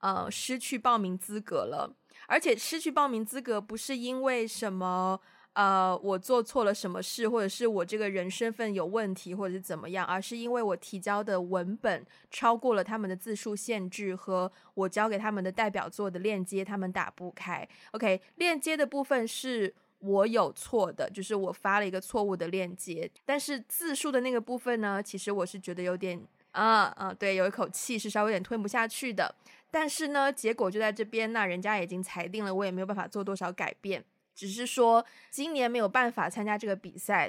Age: 20-39